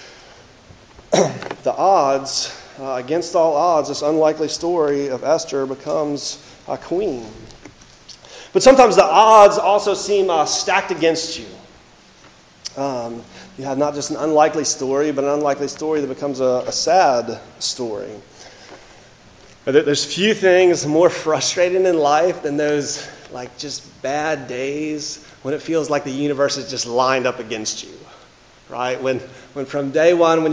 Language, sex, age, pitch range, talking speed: English, male, 30-49, 135-175 Hz, 145 wpm